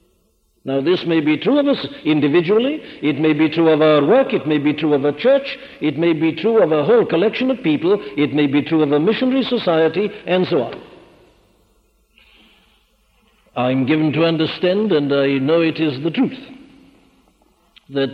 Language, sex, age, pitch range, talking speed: English, male, 60-79, 150-210 Hz, 180 wpm